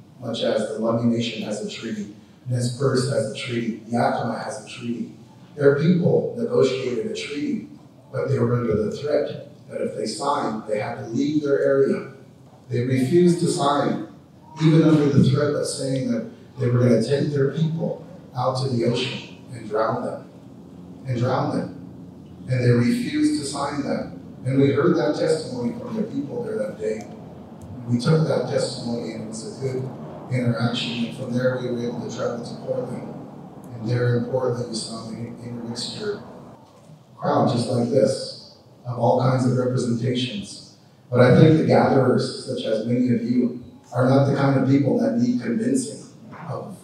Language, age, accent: English, 40-59, American